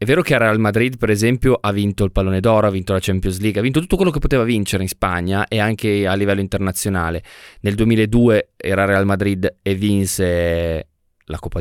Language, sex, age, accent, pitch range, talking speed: Italian, male, 20-39, native, 95-115 Hz, 205 wpm